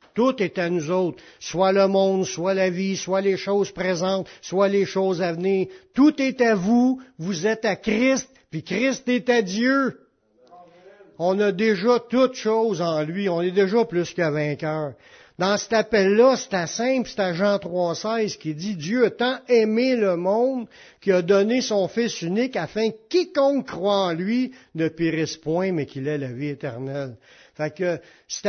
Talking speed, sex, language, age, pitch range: 185 wpm, male, French, 60-79, 160-225 Hz